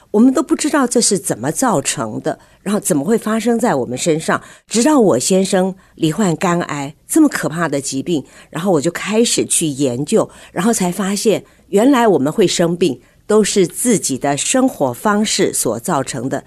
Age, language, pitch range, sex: 50-69, Chinese, 160-240 Hz, female